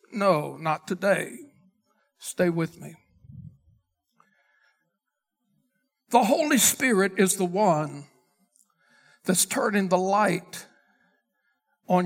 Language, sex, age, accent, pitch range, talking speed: English, male, 60-79, American, 195-270 Hz, 85 wpm